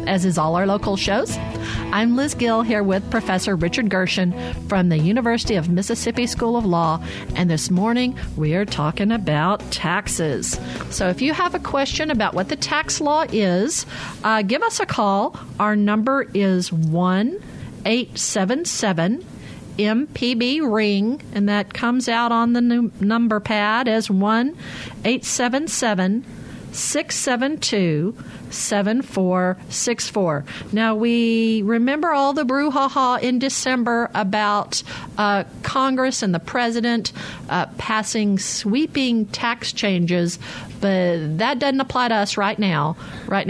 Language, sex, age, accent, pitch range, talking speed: English, female, 50-69, American, 185-240 Hz, 125 wpm